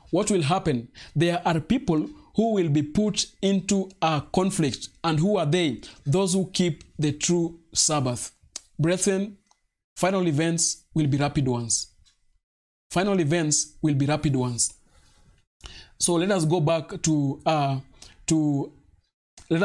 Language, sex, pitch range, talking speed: English, male, 140-170 Hz, 135 wpm